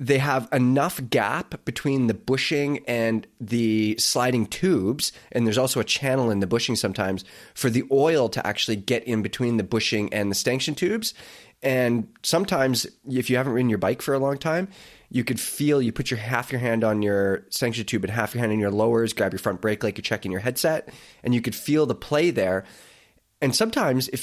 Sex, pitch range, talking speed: male, 110-135 Hz, 210 wpm